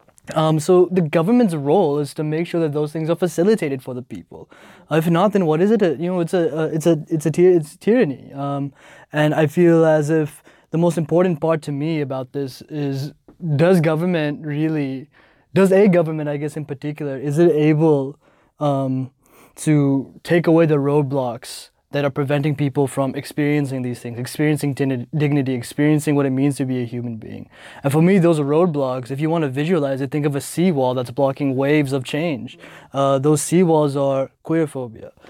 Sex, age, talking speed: male, 20-39, 200 wpm